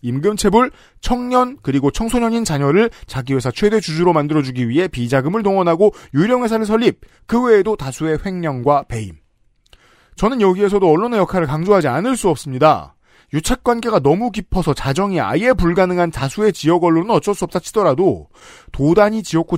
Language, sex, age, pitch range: Korean, male, 40-59, 145-200 Hz